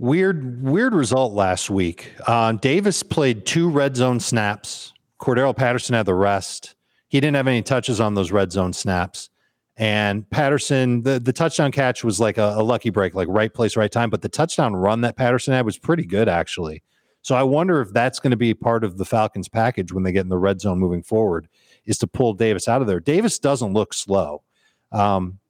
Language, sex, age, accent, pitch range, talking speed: English, male, 40-59, American, 100-130 Hz, 210 wpm